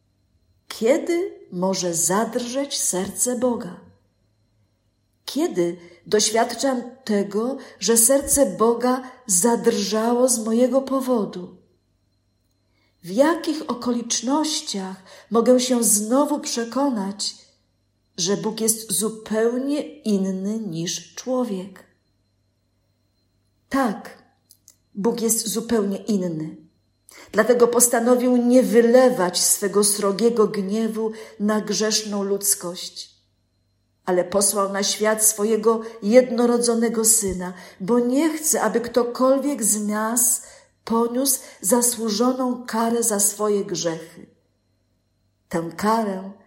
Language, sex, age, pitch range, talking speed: Polish, female, 50-69, 175-240 Hz, 85 wpm